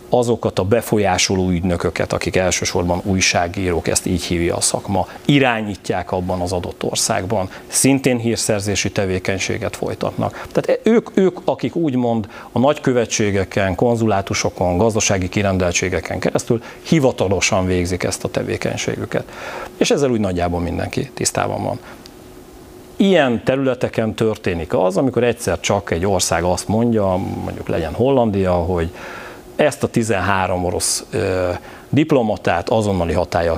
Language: Hungarian